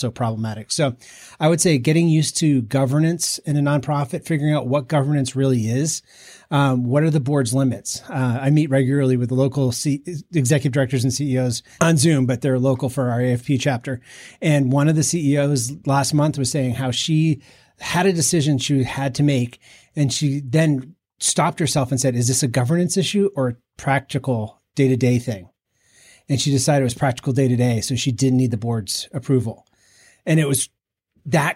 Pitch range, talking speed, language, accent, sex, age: 125-150 Hz, 195 wpm, English, American, male, 30-49